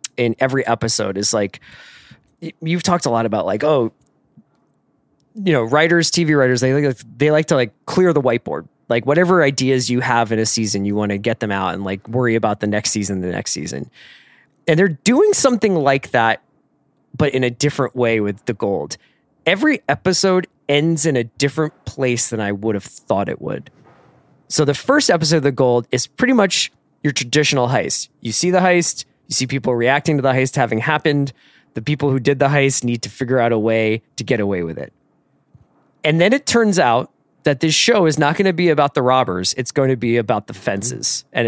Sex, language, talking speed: male, English, 210 wpm